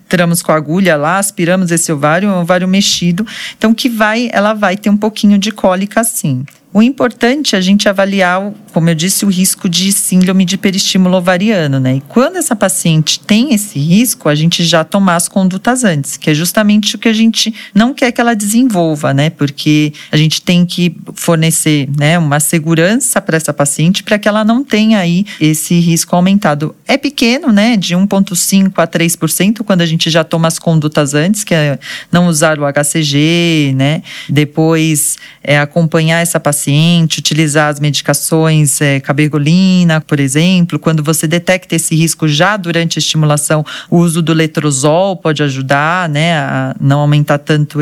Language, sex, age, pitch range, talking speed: Portuguese, female, 40-59, 155-200 Hz, 180 wpm